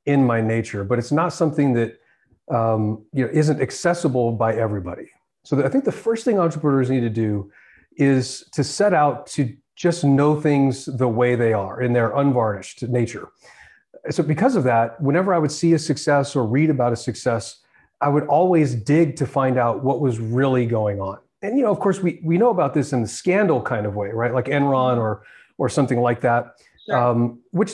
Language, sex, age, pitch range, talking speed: English, male, 40-59, 120-160 Hz, 205 wpm